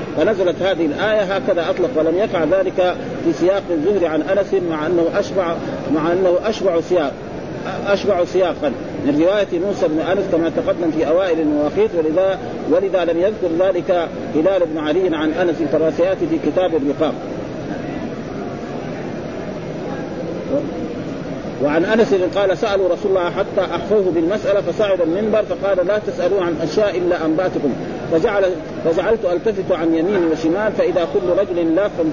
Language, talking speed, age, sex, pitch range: Arabic, 140 wpm, 50-69, male, 165-195 Hz